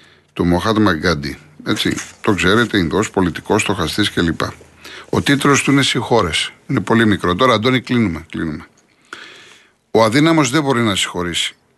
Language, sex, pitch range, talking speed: Greek, male, 100-130 Hz, 150 wpm